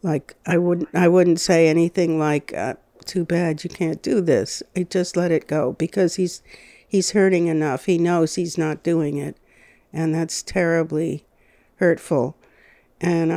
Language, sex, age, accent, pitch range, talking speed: English, female, 60-79, American, 165-200 Hz, 160 wpm